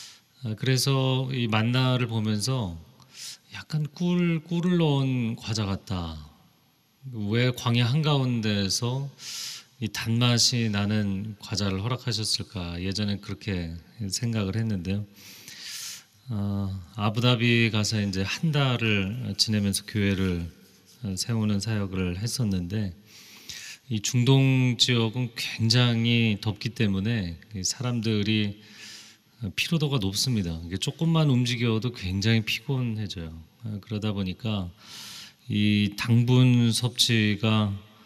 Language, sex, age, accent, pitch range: Korean, male, 30-49, native, 100-120 Hz